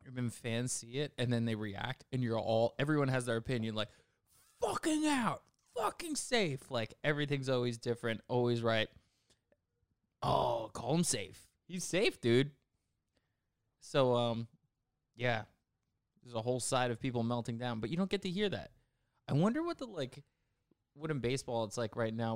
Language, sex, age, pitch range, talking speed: English, male, 20-39, 110-130 Hz, 170 wpm